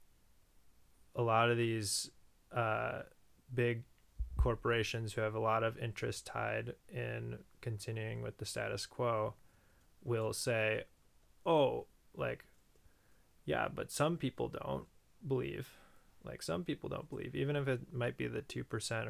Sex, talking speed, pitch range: male, 135 wpm, 110-120 Hz